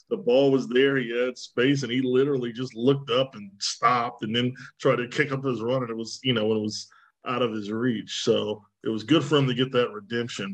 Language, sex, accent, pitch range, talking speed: English, male, American, 115-140 Hz, 250 wpm